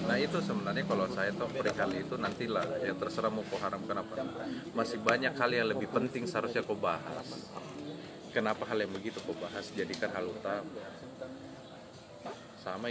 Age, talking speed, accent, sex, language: 30-49, 155 wpm, native, male, Indonesian